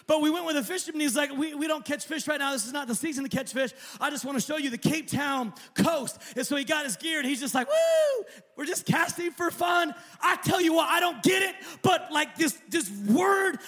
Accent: American